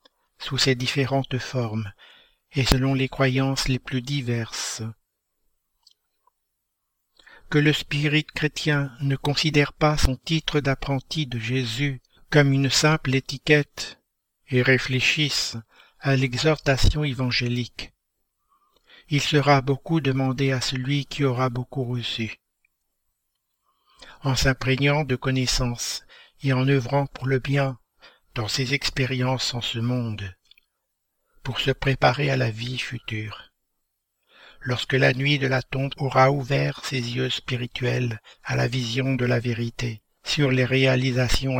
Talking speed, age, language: 125 wpm, 60-79, French